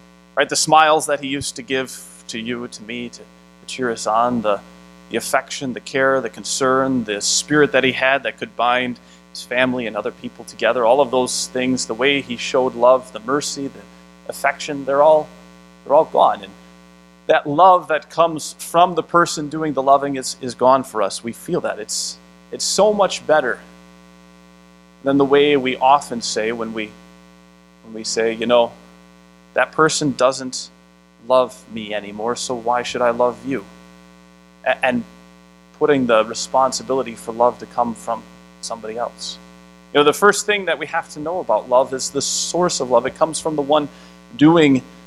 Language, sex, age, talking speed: English, male, 30-49, 185 wpm